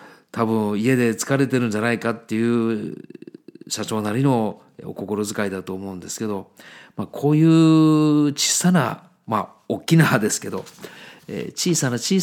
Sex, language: male, Japanese